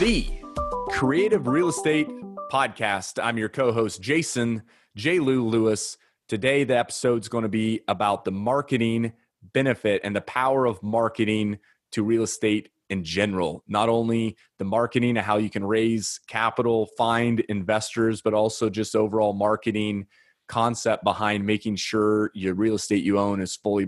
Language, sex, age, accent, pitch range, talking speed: English, male, 30-49, American, 105-125 Hz, 150 wpm